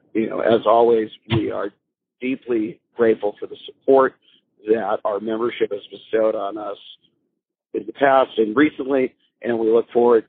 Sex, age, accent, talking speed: male, 50-69, American, 155 wpm